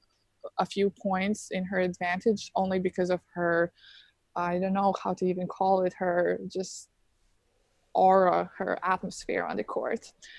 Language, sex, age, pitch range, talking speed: English, female, 20-39, 180-215 Hz, 150 wpm